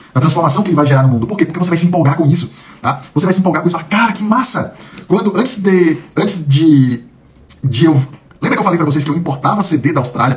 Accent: Brazilian